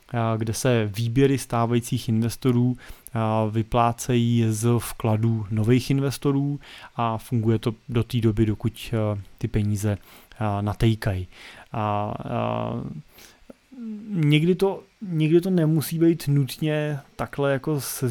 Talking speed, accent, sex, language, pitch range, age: 105 wpm, native, male, Czech, 115-135 Hz, 20-39